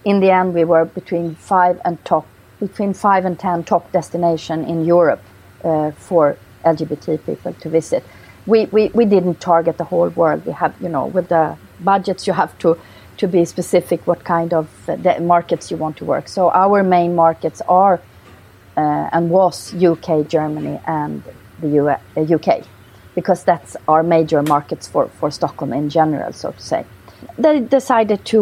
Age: 40-59